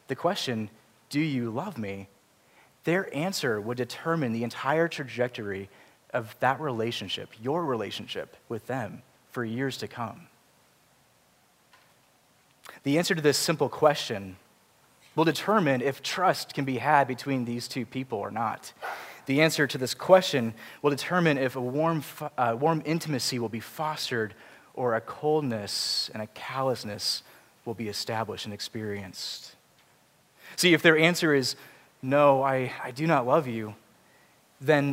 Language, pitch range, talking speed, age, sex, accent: English, 115-155 Hz, 145 wpm, 30-49, male, American